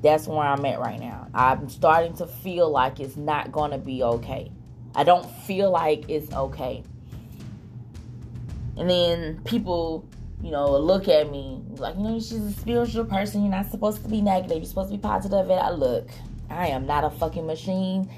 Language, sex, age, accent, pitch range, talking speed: English, female, 20-39, American, 135-185 Hz, 190 wpm